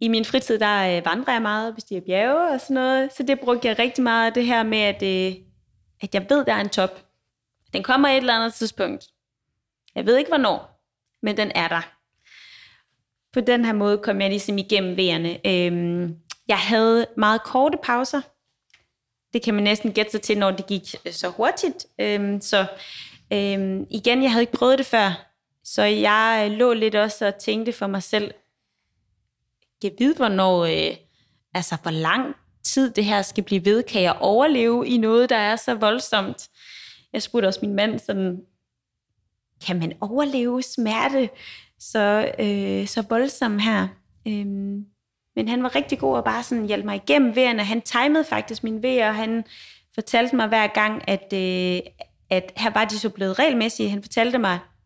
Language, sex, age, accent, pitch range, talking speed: Danish, female, 20-39, native, 195-240 Hz, 175 wpm